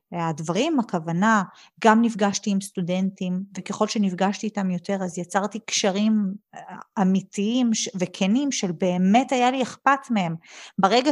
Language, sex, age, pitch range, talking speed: Hebrew, female, 30-49, 195-250 Hz, 115 wpm